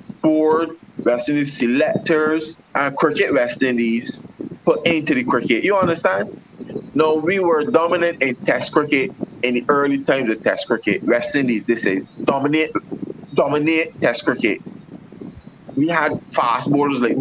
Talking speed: 145 wpm